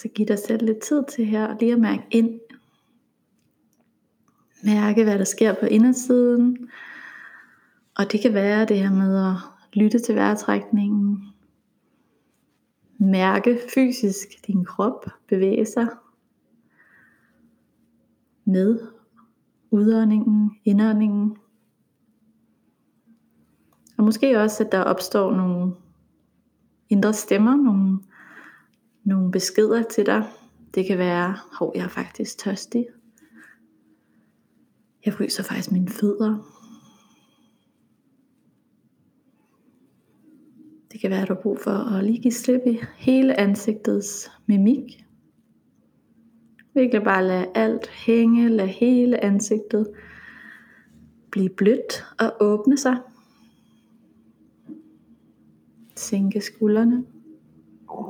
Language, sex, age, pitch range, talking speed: Danish, female, 30-49, 200-230 Hz, 100 wpm